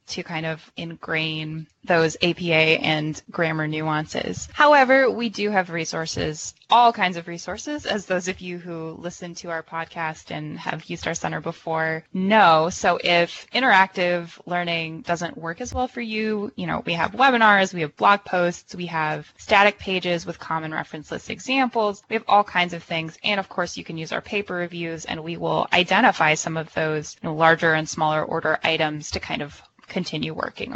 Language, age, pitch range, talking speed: English, 20-39, 165-210 Hz, 185 wpm